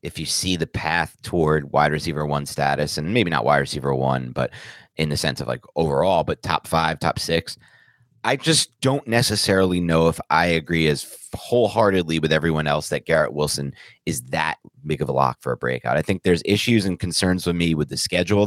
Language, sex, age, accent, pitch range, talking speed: English, male, 30-49, American, 80-110 Hz, 210 wpm